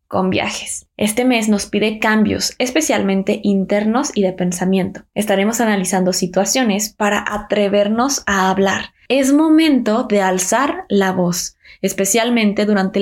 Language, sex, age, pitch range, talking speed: Spanish, female, 20-39, 185-220 Hz, 125 wpm